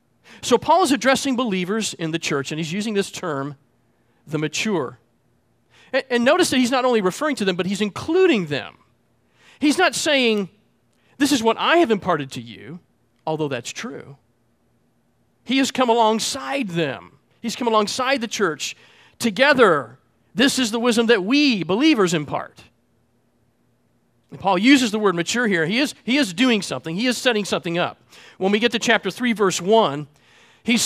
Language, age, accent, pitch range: English, 40-59, American, 170-245 Hz